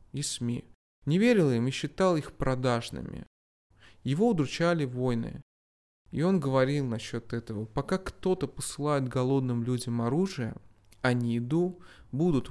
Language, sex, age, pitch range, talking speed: Russian, male, 20-39, 110-150 Hz, 130 wpm